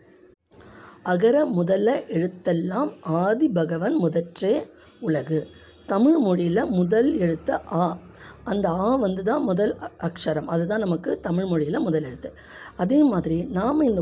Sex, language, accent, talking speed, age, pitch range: female, Tamil, native, 105 wpm, 20-39, 165-210 Hz